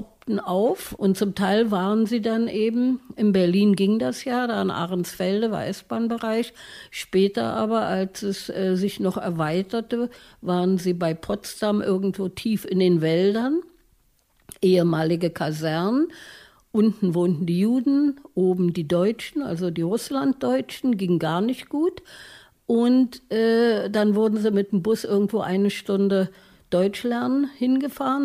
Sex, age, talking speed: female, 50-69, 135 wpm